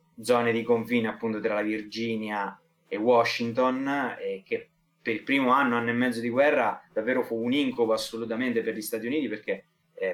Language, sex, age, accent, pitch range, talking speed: Italian, male, 20-39, native, 115-170 Hz, 185 wpm